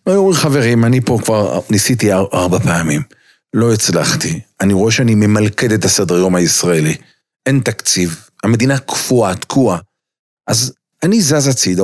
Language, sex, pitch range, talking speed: Hebrew, male, 105-150 Hz, 140 wpm